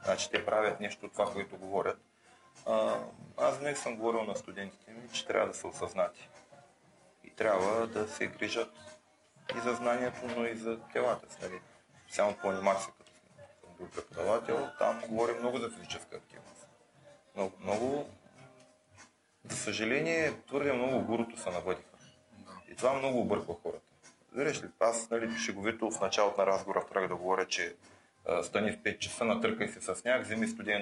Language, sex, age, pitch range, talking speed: Bulgarian, male, 30-49, 105-125 Hz, 160 wpm